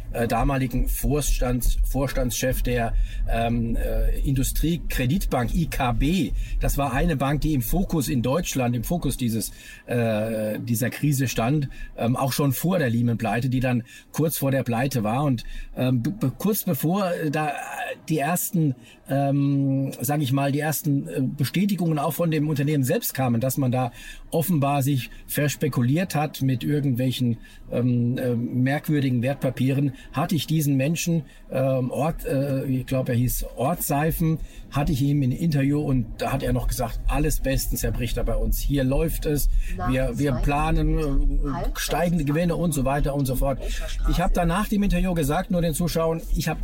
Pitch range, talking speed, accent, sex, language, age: 125-155 Hz, 165 wpm, German, male, German, 50-69